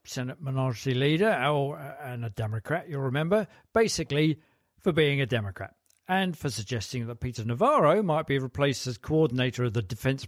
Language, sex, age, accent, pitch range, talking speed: English, male, 50-69, British, 135-170 Hz, 160 wpm